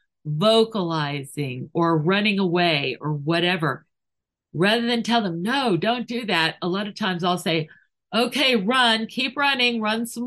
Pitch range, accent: 170-230 Hz, American